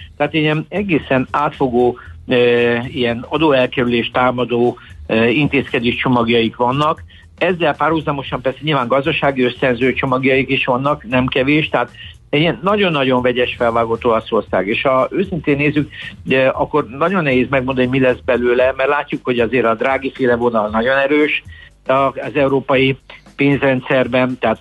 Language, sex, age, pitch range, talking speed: Hungarian, male, 60-79, 120-145 Hz, 140 wpm